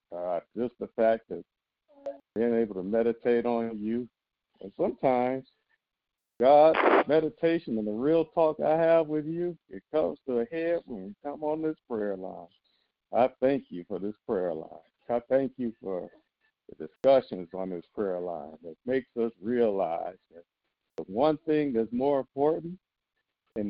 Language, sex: English, male